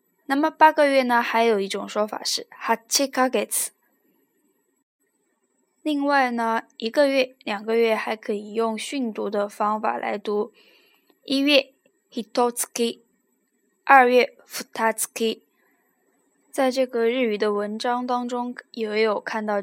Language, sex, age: Chinese, female, 10-29